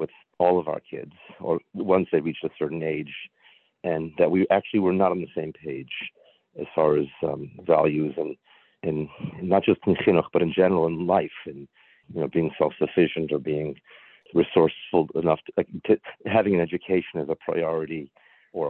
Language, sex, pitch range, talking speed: English, male, 80-95 Hz, 180 wpm